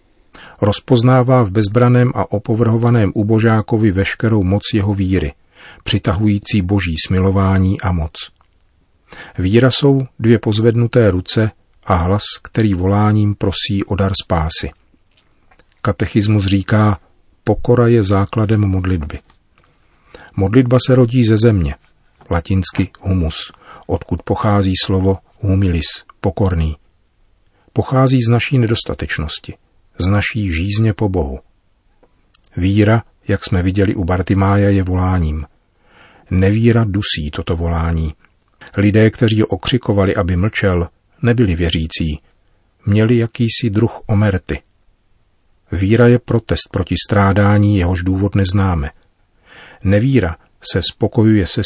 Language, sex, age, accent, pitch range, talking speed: Czech, male, 40-59, native, 90-110 Hz, 105 wpm